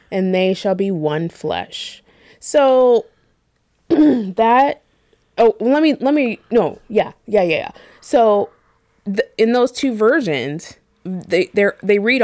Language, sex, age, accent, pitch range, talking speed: English, female, 20-39, American, 180-250 Hz, 125 wpm